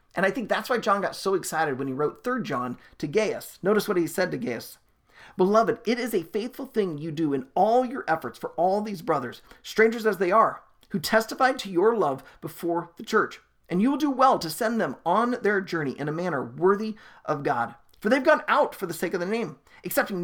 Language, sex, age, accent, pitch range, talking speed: English, male, 40-59, American, 165-225 Hz, 230 wpm